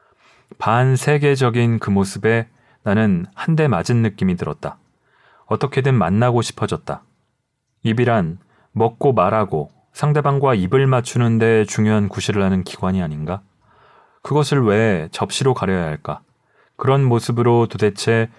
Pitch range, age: 105-130 Hz, 40-59